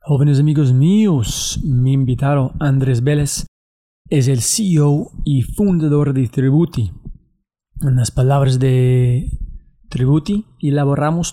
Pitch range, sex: 140-160 Hz, male